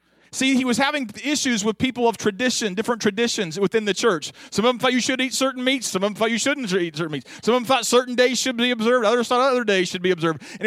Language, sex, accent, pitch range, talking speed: English, male, American, 180-245 Hz, 275 wpm